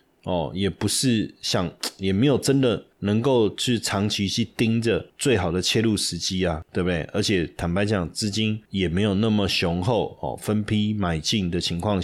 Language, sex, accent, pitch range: Chinese, male, native, 95-115 Hz